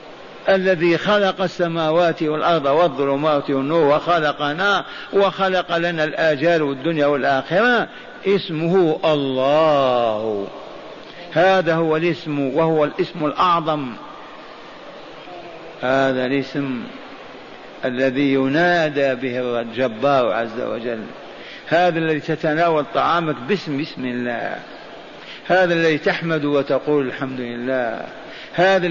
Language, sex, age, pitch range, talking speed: Arabic, male, 50-69, 140-185 Hz, 85 wpm